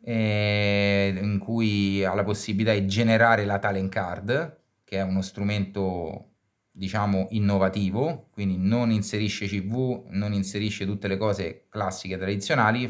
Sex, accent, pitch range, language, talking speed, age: male, native, 100-115 Hz, Italian, 130 wpm, 30-49